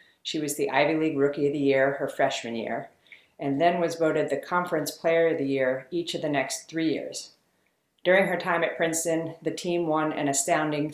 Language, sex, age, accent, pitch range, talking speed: English, female, 40-59, American, 140-160 Hz, 210 wpm